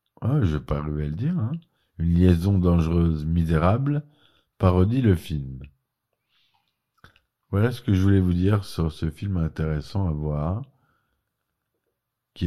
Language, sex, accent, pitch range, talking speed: French, male, French, 80-95 Hz, 135 wpm